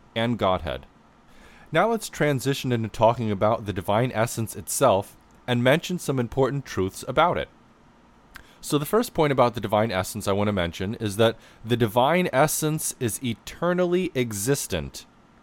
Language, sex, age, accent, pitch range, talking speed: English, male, 30-49, American, 105-145 Hz, 150 wpm